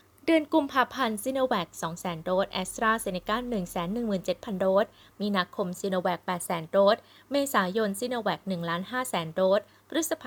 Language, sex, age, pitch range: Thai, female, 20-39, 185-240 Hz